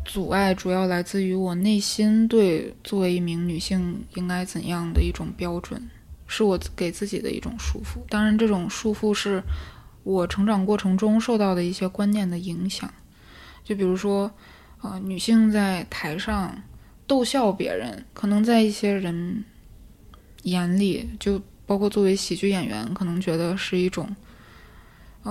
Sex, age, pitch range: female, 20-39, 180-215 Hz